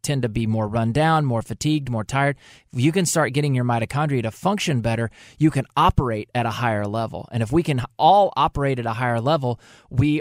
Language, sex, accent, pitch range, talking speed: English, male, American, 115-150 Hz, 225 wpm